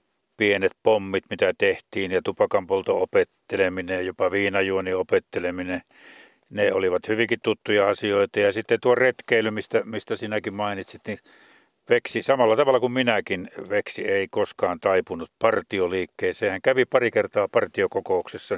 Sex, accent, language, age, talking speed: male, native, Finnish, 60-79, 125 wpm